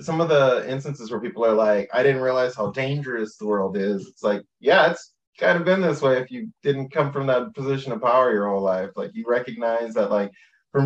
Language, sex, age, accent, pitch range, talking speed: English, male, 20-39, American, 110-140 Hz, 240 wpm